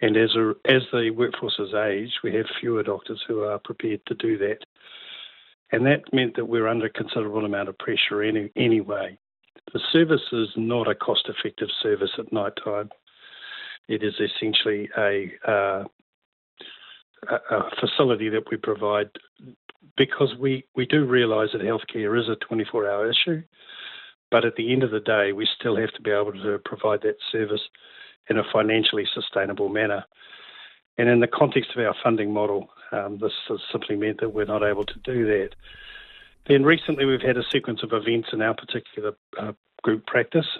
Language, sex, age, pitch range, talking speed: English, male, 50-69, 110-130 Hz, 170 wpm